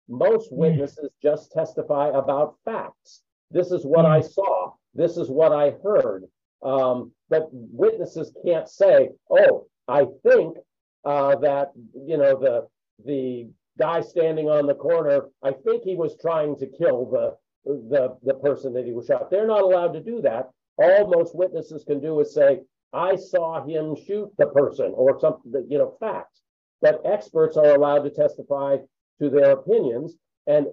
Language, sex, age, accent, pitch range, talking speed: English, male, 50-69, American, 140-220 Hz, 165 wpm